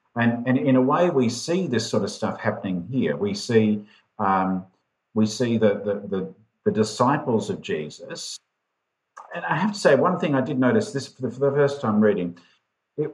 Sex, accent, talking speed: male, Australian, 200 wpm